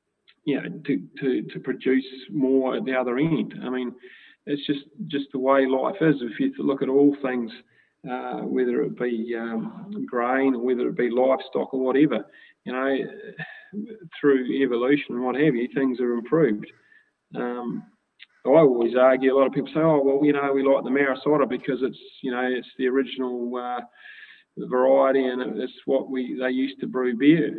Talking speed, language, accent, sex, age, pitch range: 185 wpm, English, Australian, male, 30-49, 125-145 Hz